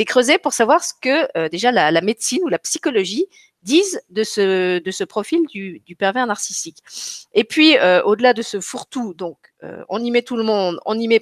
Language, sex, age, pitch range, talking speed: French, female, 40-59, 205-320 Hz, 220 wpm